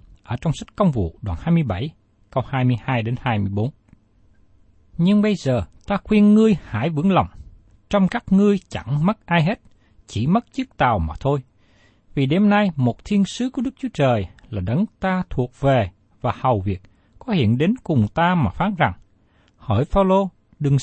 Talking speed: 175 wpm